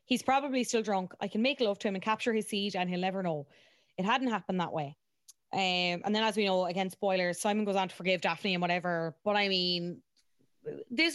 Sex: female